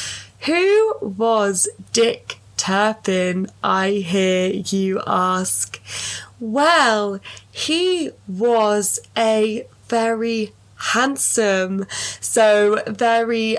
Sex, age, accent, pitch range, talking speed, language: female, 20-39, British, 195-250 Hz, 70 wpm, English